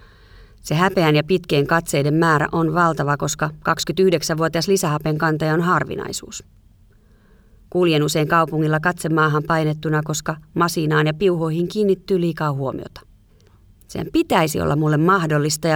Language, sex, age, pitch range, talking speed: Finnish, female, 30-49, 140-170 Hz, 120 wpm